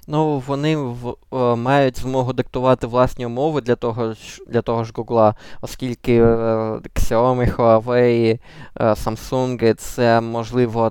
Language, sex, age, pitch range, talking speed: Ukrainian, male, 20-39, 110-130 Hz, 125 wpm